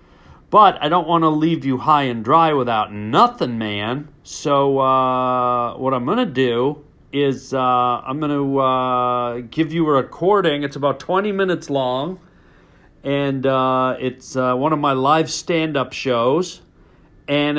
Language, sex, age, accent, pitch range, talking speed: English, male, 40-59, American, 120-150 Hz, 155 wpm